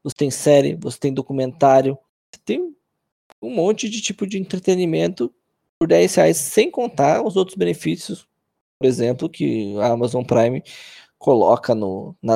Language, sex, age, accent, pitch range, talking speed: Portuguese, male, 20-39, Brazilian, 120-160 Hz, 145 wpm